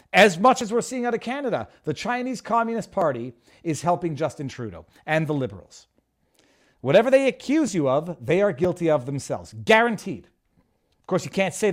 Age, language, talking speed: 40-59, English, 180 wpm